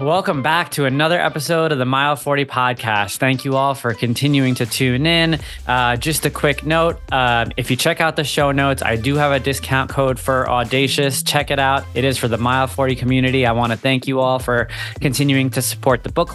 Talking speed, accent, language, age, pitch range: 225 wpm, American, English, 20-39, 125-145 Hz